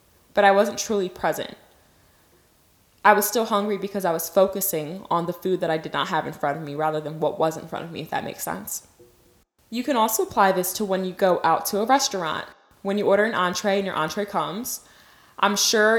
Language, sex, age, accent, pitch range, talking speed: English, female, 20-39, American, 175-215 Hz, 230 wpm